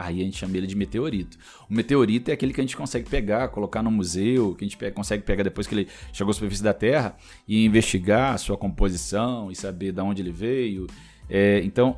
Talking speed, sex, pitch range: 225 wpm, male, 95-125 Hz